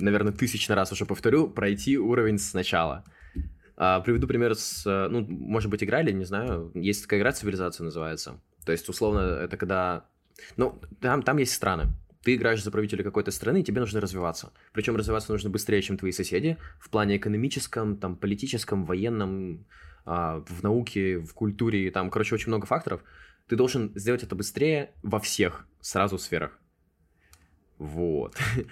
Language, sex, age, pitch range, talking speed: Russian, male, 20-39, 90-110 Hz, 160 wpm